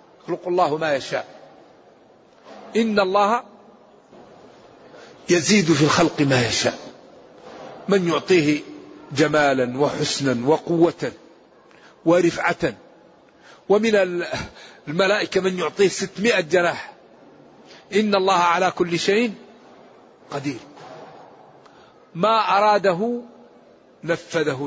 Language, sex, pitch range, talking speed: Arabic, male, 165-210 Hz, 80 wpm